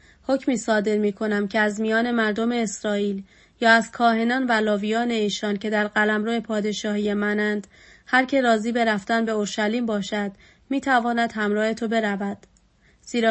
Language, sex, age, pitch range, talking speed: Persian, female, 30-49, 210-235 Hz, 145 wpm